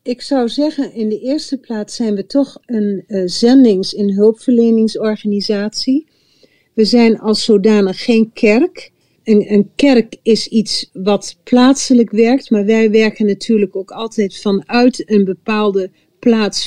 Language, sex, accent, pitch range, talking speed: Dutch, female, Dutch, 205-245 Hz, 135 wpm